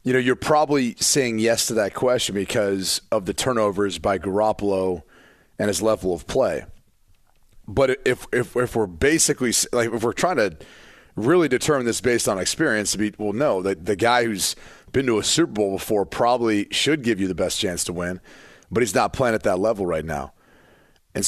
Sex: male